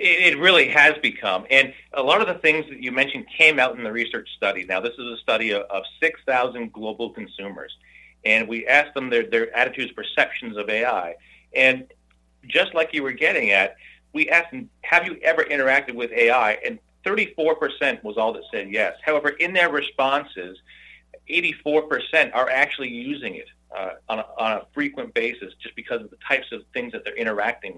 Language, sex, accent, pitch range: English, male, American, 105-170 Hz